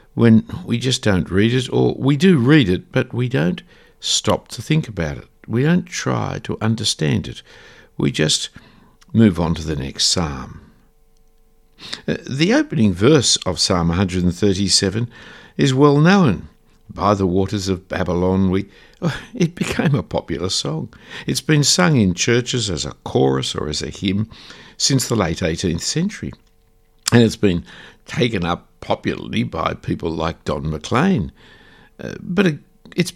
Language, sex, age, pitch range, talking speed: English, male, 60-79, 90-135 Hz, 155 wpm